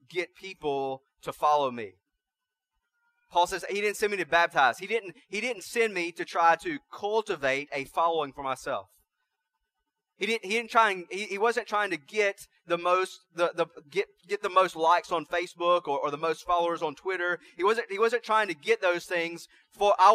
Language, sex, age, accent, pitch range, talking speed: English, male, 30-49, American, 160-225 Hz, 205 wpm